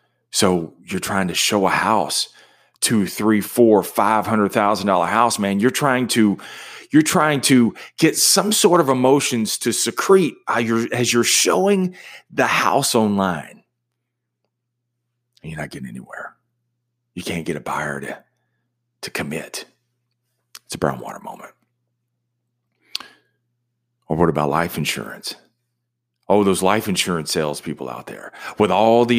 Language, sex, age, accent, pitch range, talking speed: English, male, 40-59, American, 95-120 Hz, 140 wpm